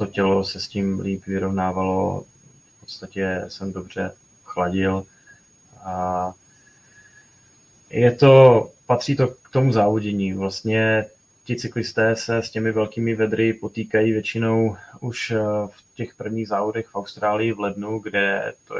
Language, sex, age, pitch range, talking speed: Czech, male, 20-39, 95-110 Hz, 130 wpm